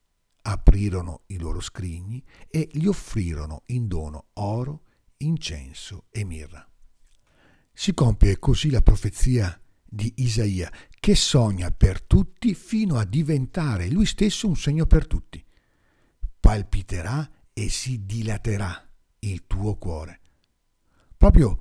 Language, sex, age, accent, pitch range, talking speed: Italian, male, 50-69, native, 90-130 Hz, 115 wpm